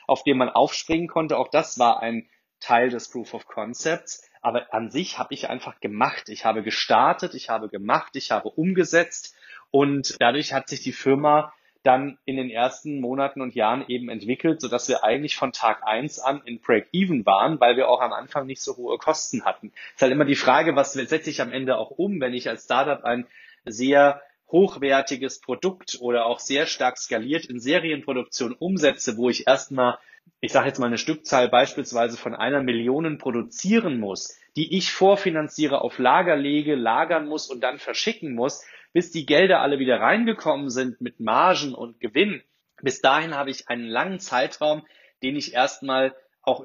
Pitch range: 125-155 Hz